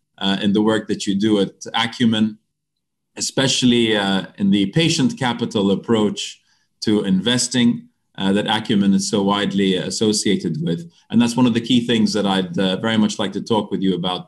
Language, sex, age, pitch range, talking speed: English, male, 30-49, 100-125 Hz, 185 wpm